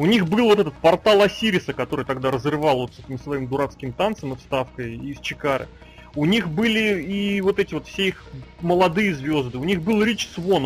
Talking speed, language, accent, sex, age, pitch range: 190 wpm, Russian, native, male, 30-49, 140-185 Hz